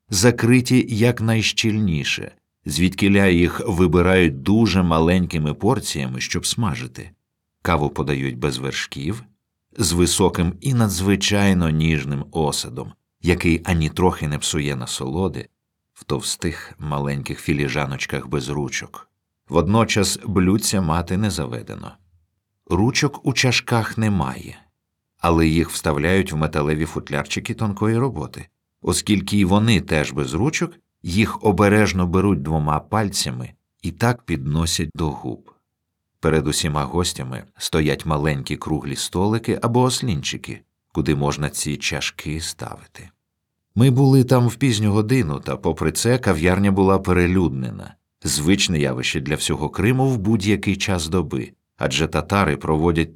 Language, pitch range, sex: Ukrainian, 75-105 Hz, male